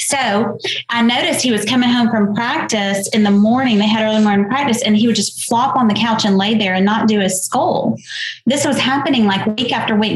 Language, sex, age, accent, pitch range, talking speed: English, female, 30-49, American, 205-240 Hz, 235 wpm